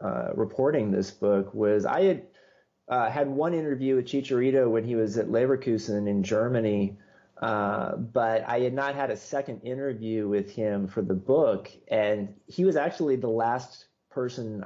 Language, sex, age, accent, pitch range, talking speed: English, male, 30-49, American, 105-125 Hz, 170 wpm